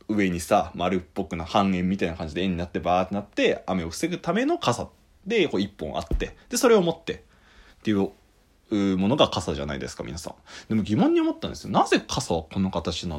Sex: male